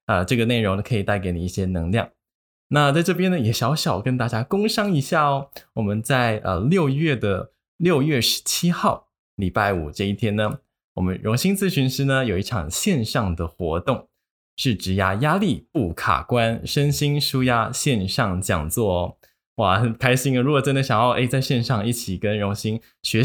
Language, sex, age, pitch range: Chinese, male, 20-39, 95-125 Hz